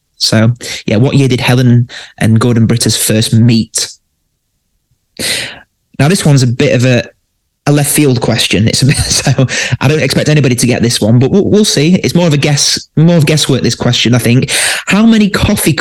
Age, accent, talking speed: 20-39, British, 200 wpm